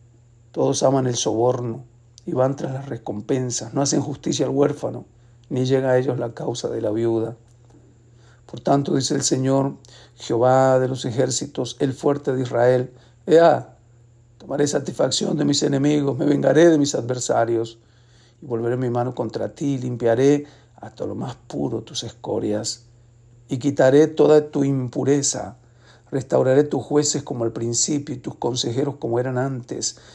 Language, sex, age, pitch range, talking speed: Spanish, male, 60-79, 120-140 Hz, 155 wpm